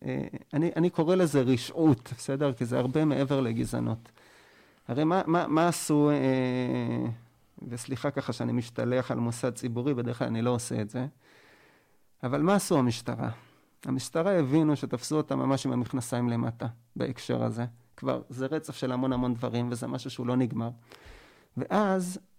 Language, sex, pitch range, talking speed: Hebrew, male, 130-175 Hz, 160 wpm